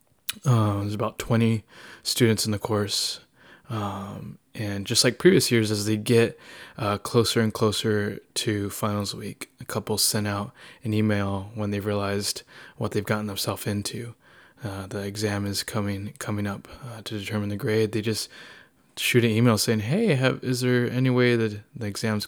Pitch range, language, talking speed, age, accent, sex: 100-115 Hz, English, 170 wpm, 20-39, American, male